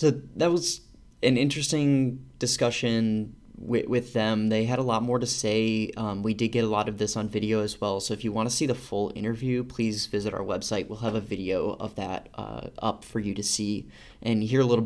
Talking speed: 230 wpm